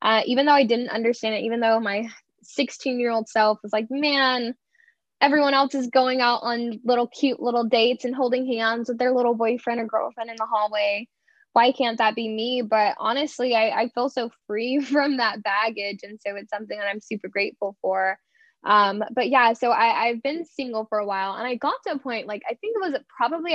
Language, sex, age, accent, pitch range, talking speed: English, female, 10-29, American, 215-260 Hz, 215 wpm